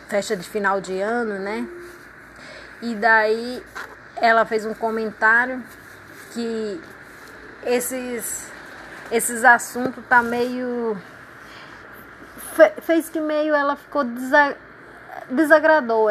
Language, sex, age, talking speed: Portuguese, female, 20-39, 95 wpm